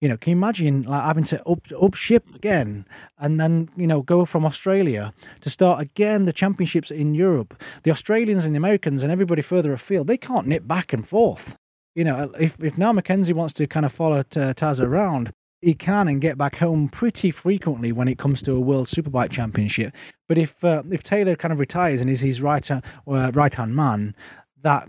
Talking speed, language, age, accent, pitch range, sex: 210 wpm, English, 30-49, British, 120-165 Hz, male